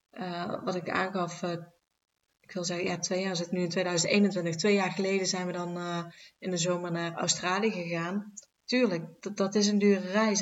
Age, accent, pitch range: 30-49, Dutch, 180-215 Hz